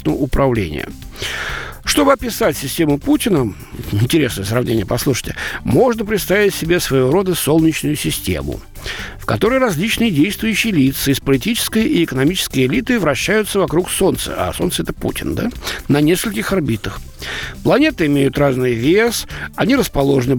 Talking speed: 125 wpm